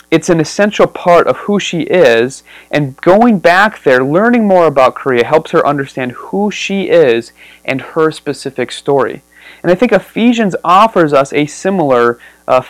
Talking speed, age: 165 wpm, 30-49